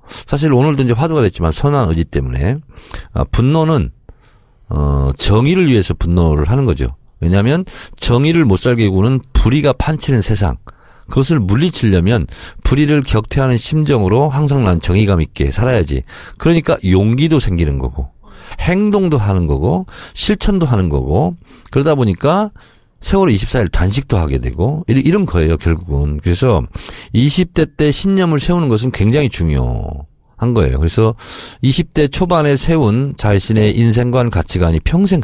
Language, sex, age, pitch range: Korean, male, 50-69, 90-150 Hz